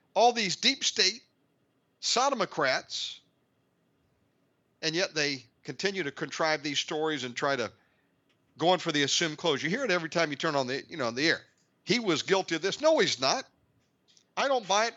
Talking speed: 195 wpm